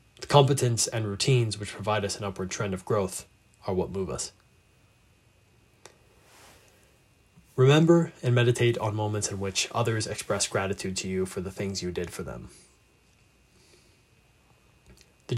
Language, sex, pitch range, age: English, male, 95-115 Hz, 20-39